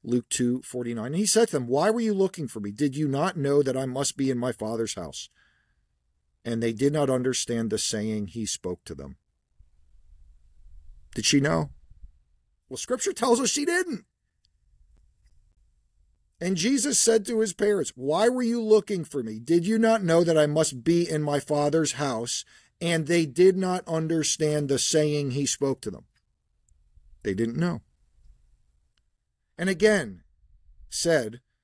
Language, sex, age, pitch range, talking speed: English, male, 40-59, 105-160 Hz, 165 wpm